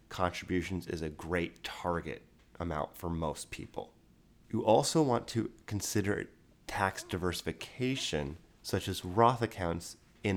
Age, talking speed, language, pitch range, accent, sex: 30-49, 120 wpm, English, 85-105 Hz, American, male